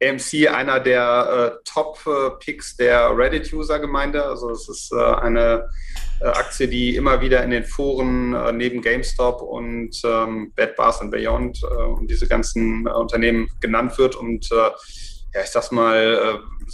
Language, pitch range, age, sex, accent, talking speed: German, 115-140 Hz, 30-49, male, German, 155 wpm